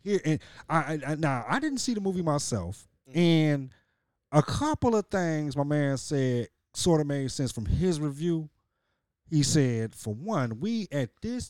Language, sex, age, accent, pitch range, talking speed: English, male, 30-49, American, 120-165 Hz, 170 wpm